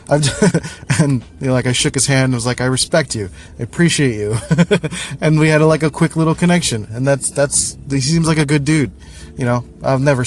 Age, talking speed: 20-39, 245 wpm